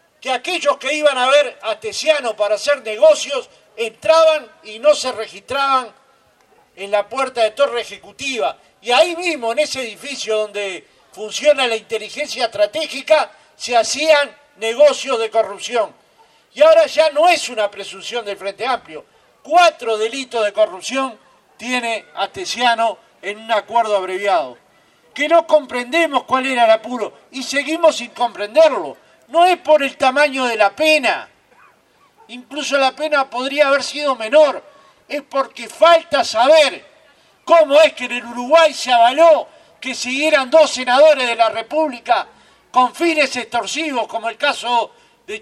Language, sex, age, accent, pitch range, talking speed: Spanish, male, 50-69, Argentinian, 235-310 Hz, 145 wpm